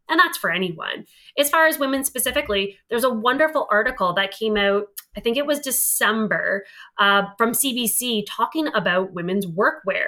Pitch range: 195-255 Hz